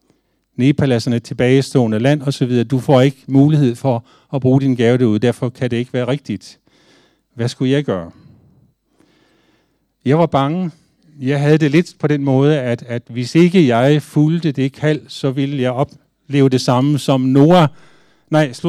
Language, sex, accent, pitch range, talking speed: Danish, male, native, 125-150 Hz, 170 wpm